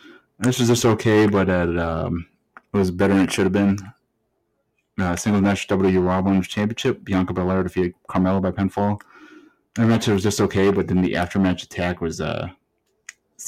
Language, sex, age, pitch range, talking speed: English, male, 30-49, 90-100 Hz, 180 wpm